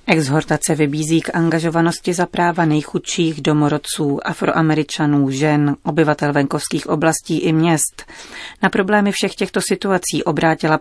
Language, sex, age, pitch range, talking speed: Czech, female, 30-49, 140-165 Hz, 115 wpm